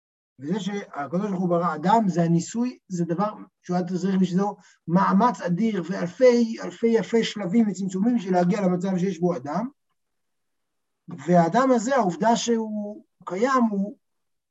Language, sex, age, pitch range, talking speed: Hebrew, male, 60-79, 175-230 Hz, 130 wpm